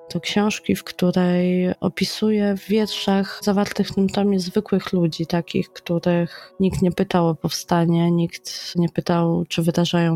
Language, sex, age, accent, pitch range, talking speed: Polish, female, 20-39, native, 175-190 Hz, 150 wpm